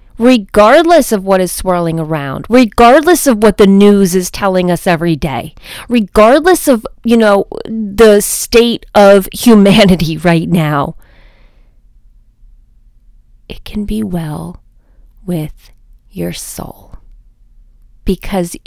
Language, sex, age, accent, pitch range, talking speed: English, female, 30-49, American, 165-235 Hz, 110 wpm